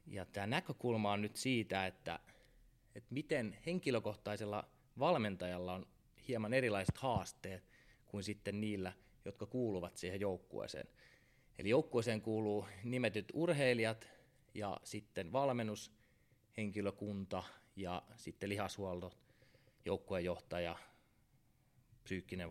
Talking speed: 95 wpm